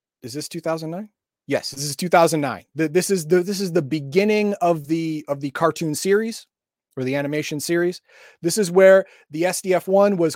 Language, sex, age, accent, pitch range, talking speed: English, male, 30-49, American, 140-190 Hz, 180 wpm